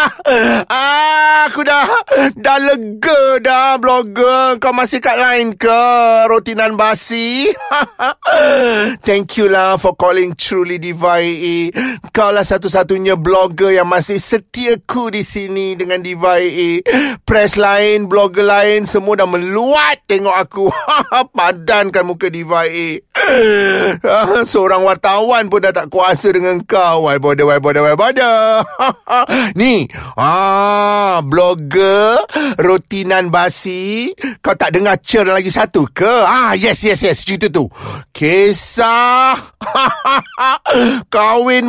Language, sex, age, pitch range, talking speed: Malay, male, 30-49, 195-245 Hz, 110 wpm